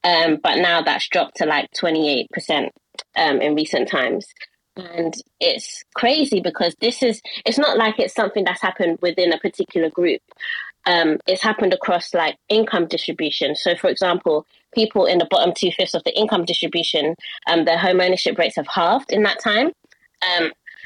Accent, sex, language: British, female, English